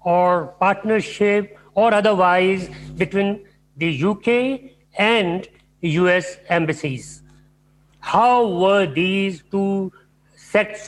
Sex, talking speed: male, 85 wpm